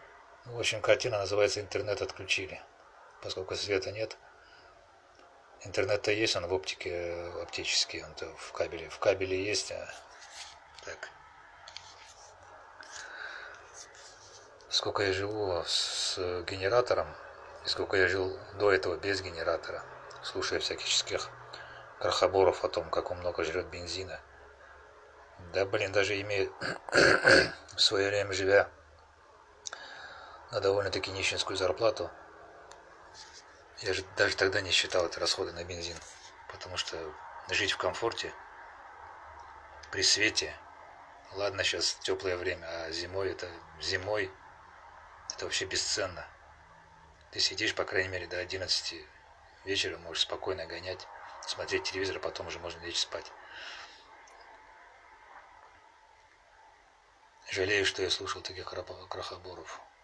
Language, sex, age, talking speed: Russian, male, 40-59, 110 wpm